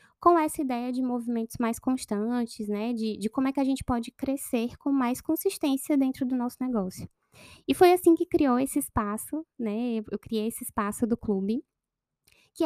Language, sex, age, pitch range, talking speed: Portuguese, female, 10-29, 220-270 Hz, 185 wpm